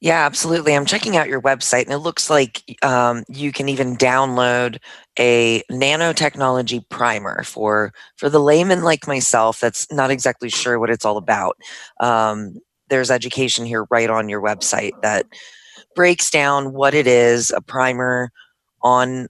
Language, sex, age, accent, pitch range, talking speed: English, female, 30-49, American, 115-140 Hz, 155 wpm